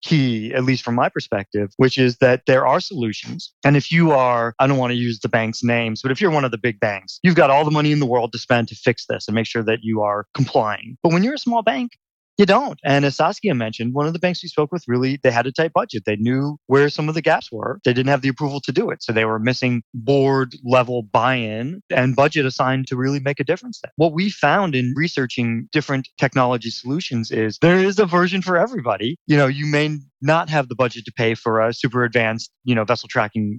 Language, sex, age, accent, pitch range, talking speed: English, male, 30-49, American, 120-150 Hz, 255 wpm